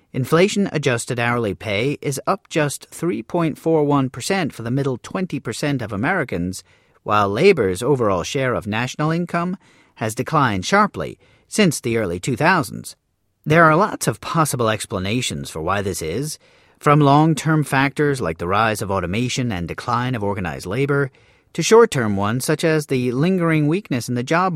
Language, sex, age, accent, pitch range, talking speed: English, male, 40-59, American, 115-160 Hz, 150 wpm